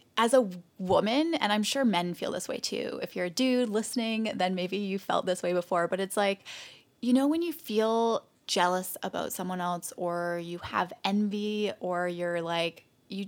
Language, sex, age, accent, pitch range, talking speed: English, female, 20-39, American, 180-235 Hz, 195 wpm